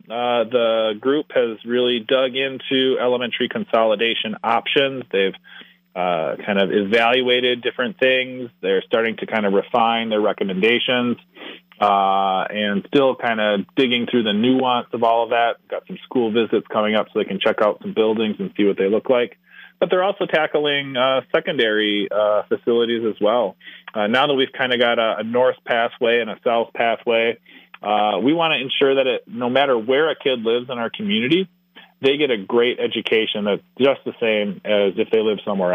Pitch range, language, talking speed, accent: 105-135 Hz, English, 185 wpm, American